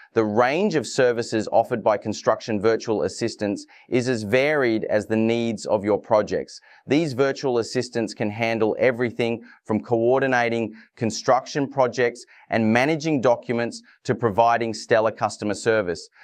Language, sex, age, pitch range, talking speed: English, male, 30-49, 110-125 Hz, 135 wpm